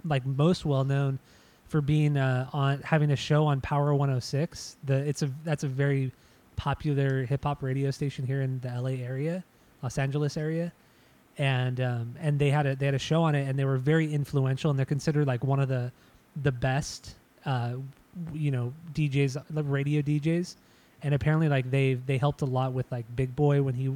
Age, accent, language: 20-39, American, English